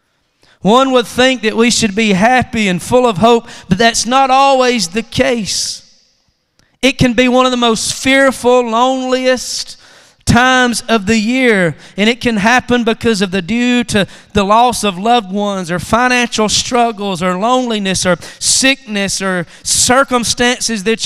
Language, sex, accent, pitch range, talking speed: English, male, American, 225-260 Hz, 155 wpm